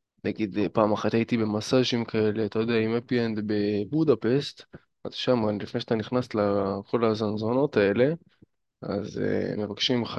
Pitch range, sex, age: 105-135 Hz, male, 20-39